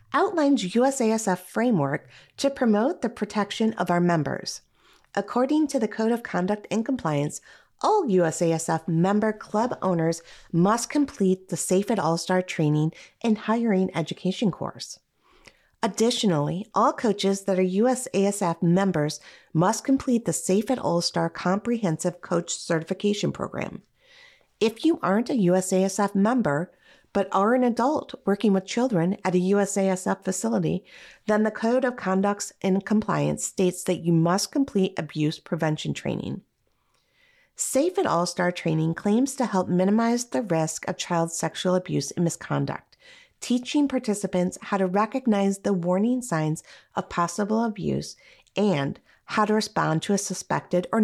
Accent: American